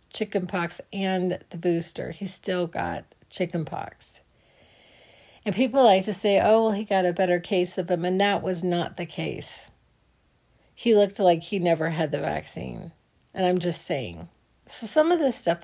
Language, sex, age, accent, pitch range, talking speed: English, female, 40-59, American, 165-200 Hz, 180 wpm